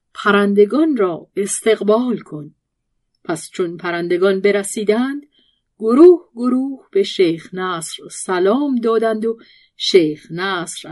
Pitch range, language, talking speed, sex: 195-265 Hz, Persian, 100 wpm, female